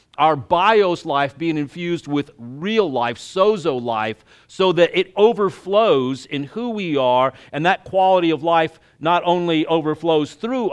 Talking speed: 150 wpm